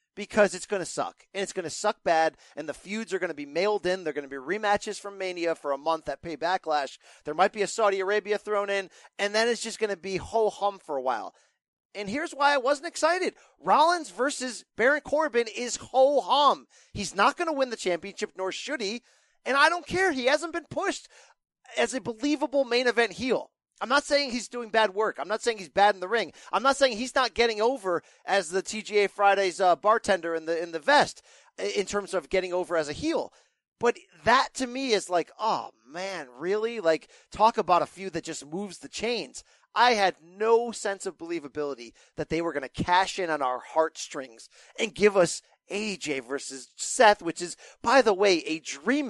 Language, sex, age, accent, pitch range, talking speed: English, male, 40-59, American, 175-240 Hz, 220 wpm